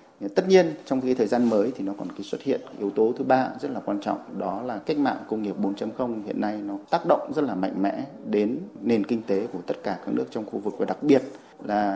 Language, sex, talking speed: Vietnamese, male, 265 wpm